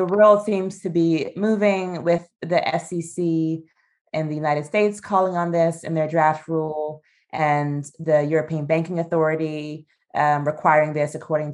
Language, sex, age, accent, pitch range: Chinese, female, 20-39, American, 145-170 Hz